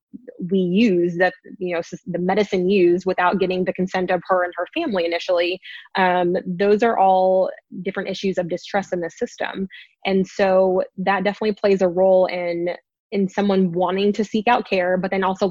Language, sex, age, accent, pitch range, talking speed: English, female, 20-39, American, 180-200 Hz, 180 wpm